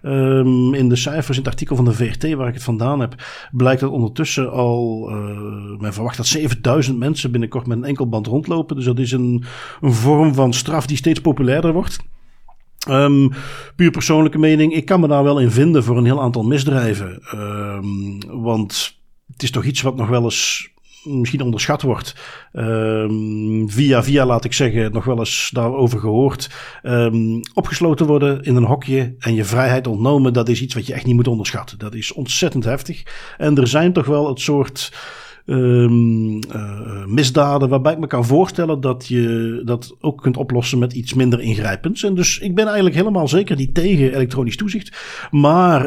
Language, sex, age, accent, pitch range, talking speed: Dutch, male, 50-69, Dutch, 120-150 Hz, 180 wpm